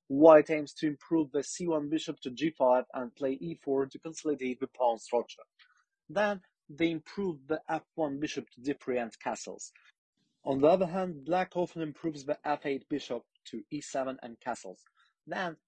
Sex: male